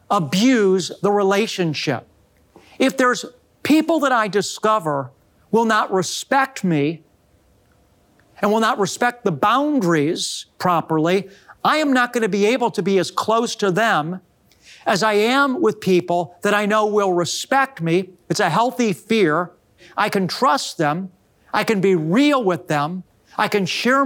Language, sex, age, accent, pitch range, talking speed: English, male, 50-69, American, 180-245 Hz, 150 wpm